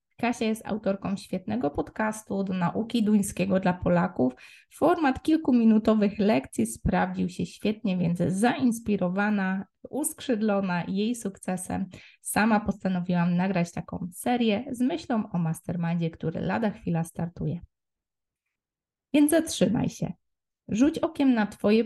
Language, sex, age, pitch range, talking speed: Polish, female, 20-39, 180-235 Hz, 115 wpm